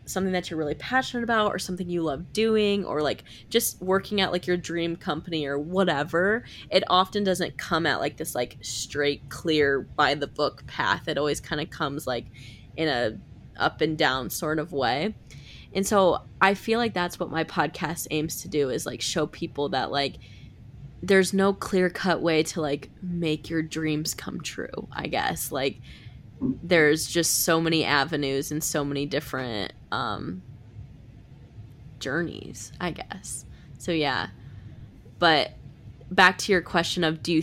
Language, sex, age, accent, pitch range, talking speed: English, female, 20-39, American, 140-180 Hz, 170 wpm